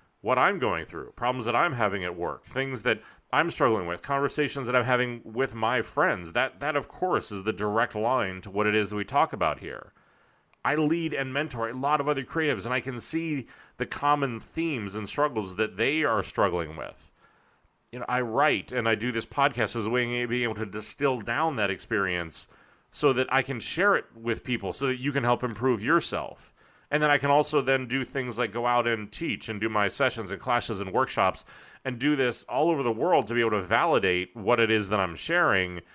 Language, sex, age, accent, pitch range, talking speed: English, male, 40-59, American, 110-135 Hz, 225 wpm